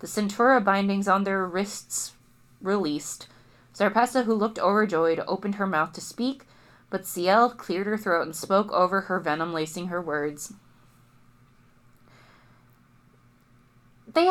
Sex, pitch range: female, 175-260 Hz